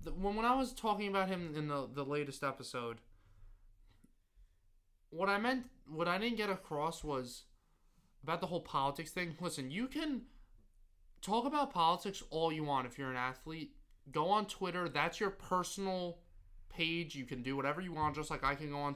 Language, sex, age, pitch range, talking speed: English, male, 20-39, 115-165 Hz, 180 wpm